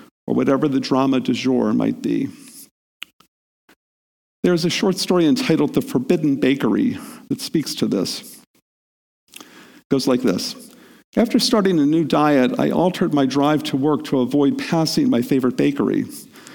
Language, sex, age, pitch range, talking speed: English, male, 50-69, 145-235 Hz, 145 wpm